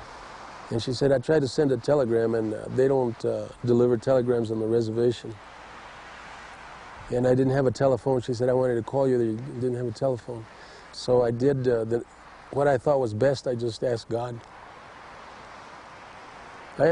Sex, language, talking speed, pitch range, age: male, English, 180 wpm, 120-180 Hz, 40-59